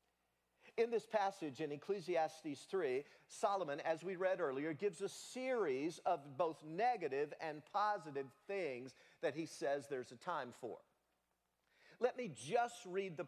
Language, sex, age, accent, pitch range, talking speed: English, male, 50-69, American, 130-215 Hz, 145 wpm